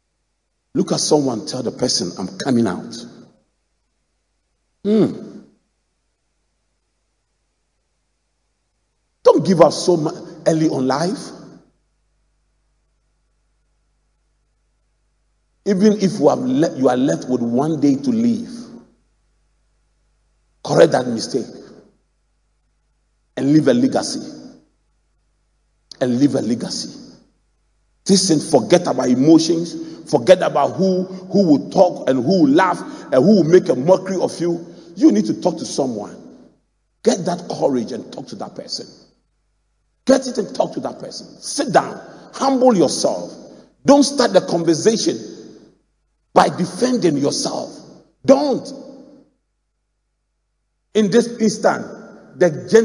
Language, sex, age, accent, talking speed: English, male, 50-69, Nigerian, 110 wpm